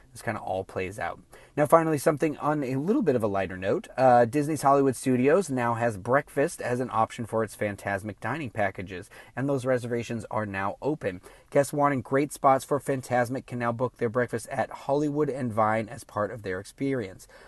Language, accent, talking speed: English, American, 200 wpm